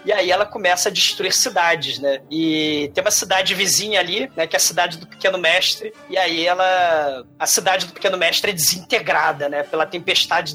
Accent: Brazilian